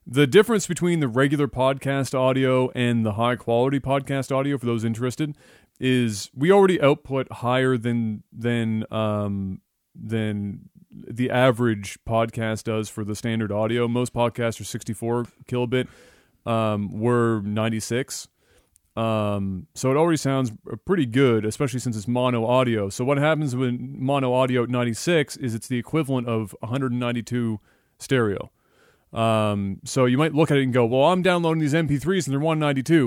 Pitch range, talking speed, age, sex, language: 115-135 Hz, 150 wpm, 30-49, male, English